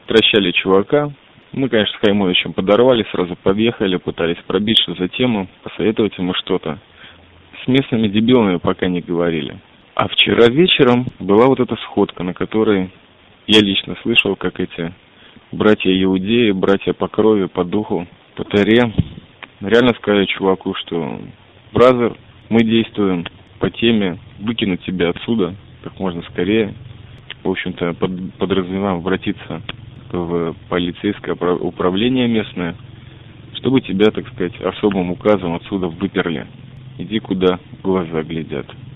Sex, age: male, 20-39